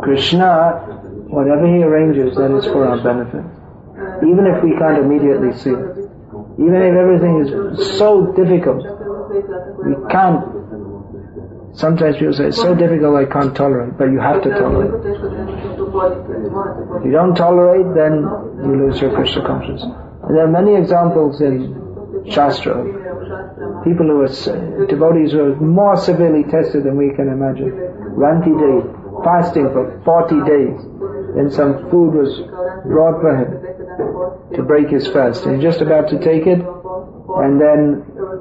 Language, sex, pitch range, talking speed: English, male, 135-180 Hz, 140 wpm